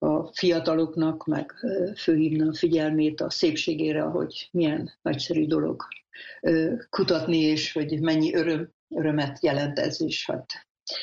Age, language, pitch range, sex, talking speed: 60-79, Hungarian, 155-175 Hz, female, 115 wpm